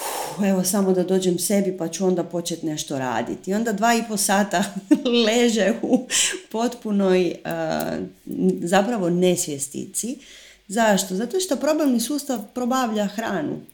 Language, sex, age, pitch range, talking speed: Croatian, female, 30-49, 170-225 Hz, 125 wpm